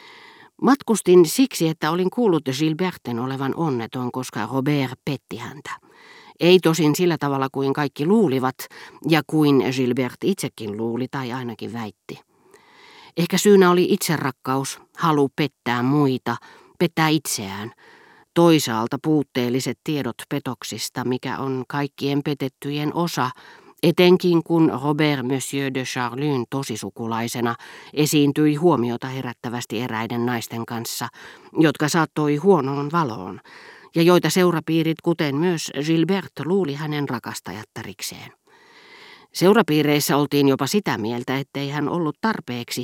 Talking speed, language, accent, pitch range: 115 wpm, Finnish, native, 130-165 Hz